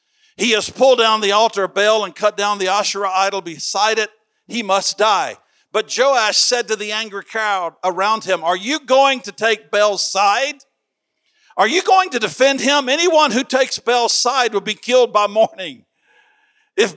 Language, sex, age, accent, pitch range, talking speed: English, male, 60-79, American, 195-265 Hz, 185 wpm